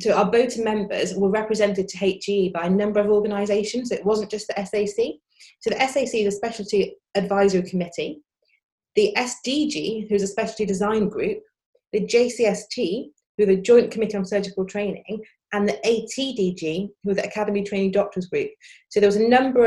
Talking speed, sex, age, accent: 175 wpm, female, 30-49, British